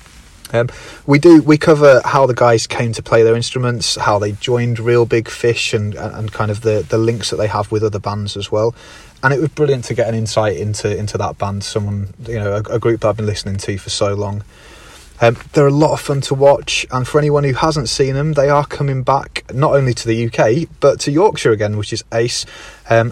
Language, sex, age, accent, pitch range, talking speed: English, male, 30-49, British, 105-140 Hz, 240 wpm